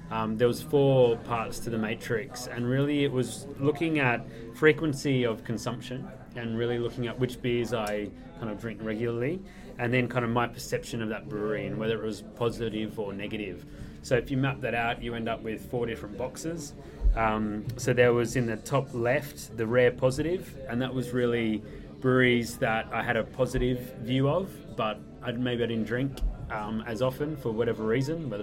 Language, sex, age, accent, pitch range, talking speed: English, male, 20-39, Australian, 110-130 Hz, 195 wpm